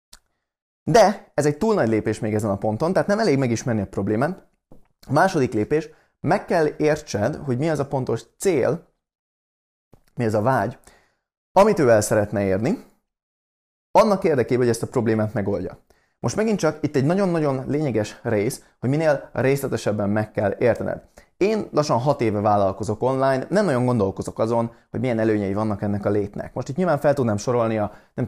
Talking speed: 175 wpm